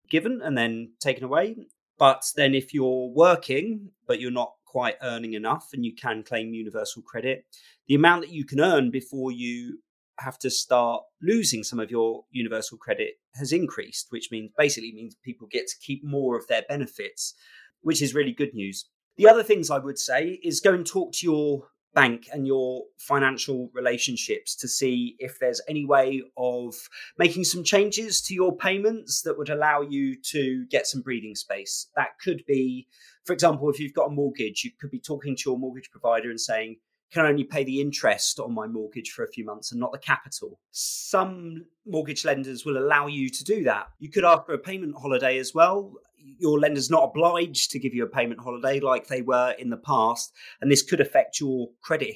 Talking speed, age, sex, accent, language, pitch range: 200 wpm, 30-49, male, British, English, 125-170 Hz